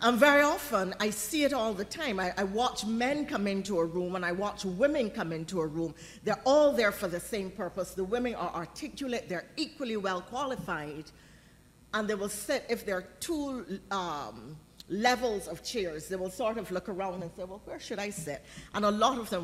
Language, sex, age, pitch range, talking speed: English, female, 40-59, 175-225 Hz, 215 wpm